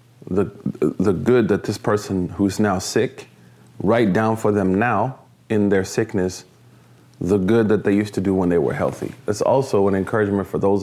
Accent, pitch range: American, 95-110 Hz